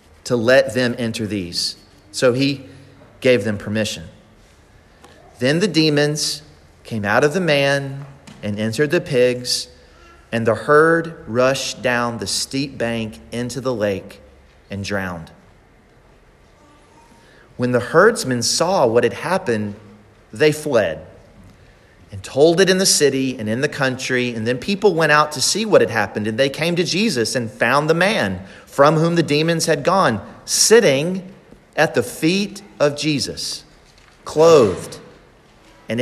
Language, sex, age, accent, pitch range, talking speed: English, male, 40-59, American, 110-165 Hz, 145 wpm